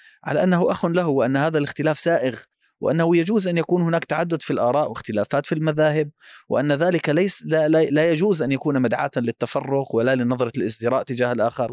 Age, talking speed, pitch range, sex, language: 30-49, 175 wpm, 120-150 Hz, male, Arabic